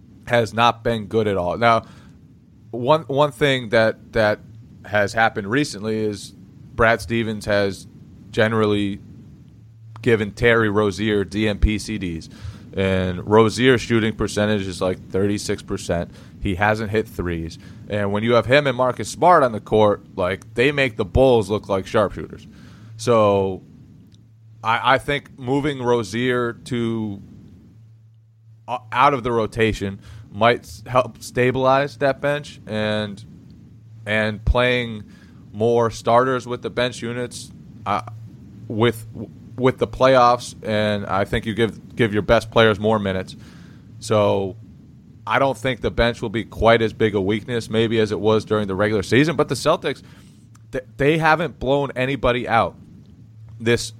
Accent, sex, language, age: American, male, English, 30-49